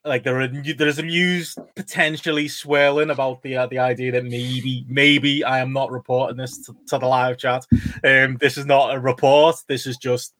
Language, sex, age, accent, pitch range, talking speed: English, male, 20-39, British, 115-140 Hz, 200 wpm